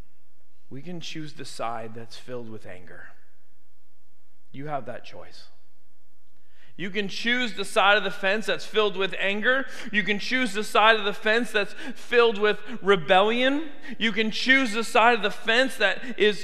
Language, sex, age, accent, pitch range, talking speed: English, male, 30-49, American, 185-240 Hz, 170 wpm